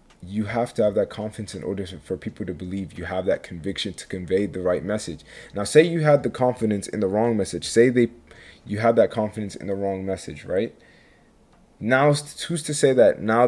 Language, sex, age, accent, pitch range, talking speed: English, male, 20-39, American, 90-110 Hz, 215 wpm